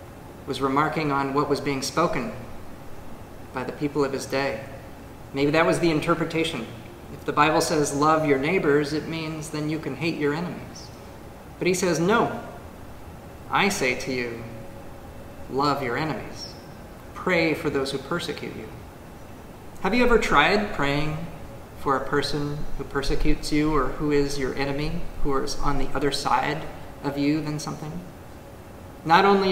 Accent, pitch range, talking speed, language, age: American, 135-155 Hz, 160 wpm, English, 30-49